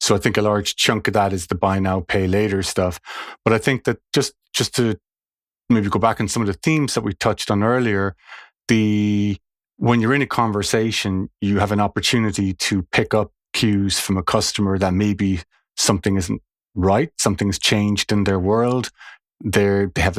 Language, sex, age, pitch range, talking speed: English, male, 30-49, 95-110 Hz, 195 wpm